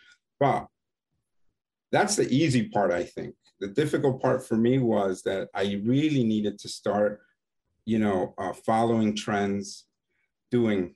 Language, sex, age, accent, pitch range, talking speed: English, male, 50-69, American, 100-120 Hz, 135 wpm